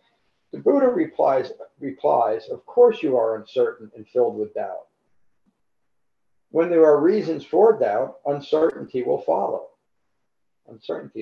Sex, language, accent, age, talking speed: male, English, American, 50-69, 125 wpm